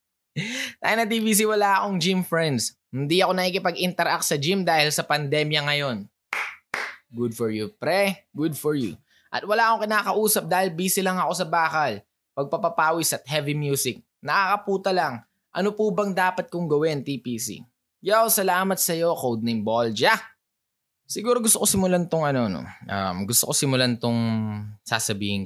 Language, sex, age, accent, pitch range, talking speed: Filipino, male, 20-39, native, 115-175 Hz, 150 wpm